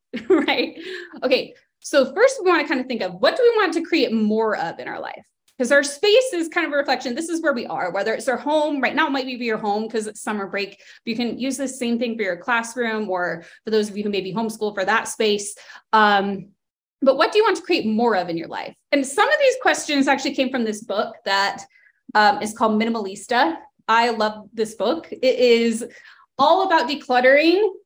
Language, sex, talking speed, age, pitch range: English, female, 235 wpm, 20-39, 215-285 Hz